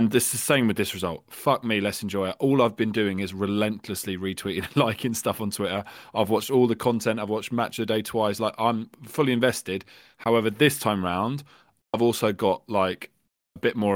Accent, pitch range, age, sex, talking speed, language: British, 95-110 Hz, 20-39, male, 215 wpm, English